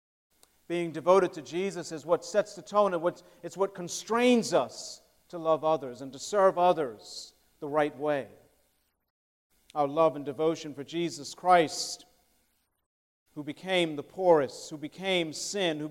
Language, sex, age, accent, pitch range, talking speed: English, male, 50-69, American, 120-170 Hz, 150 wpm